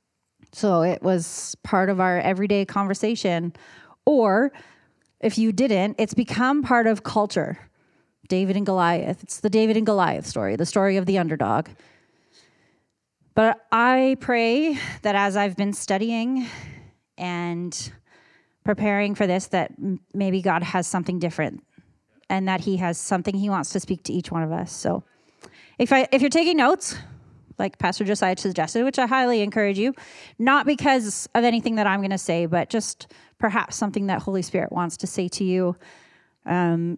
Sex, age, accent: female, 30-49, American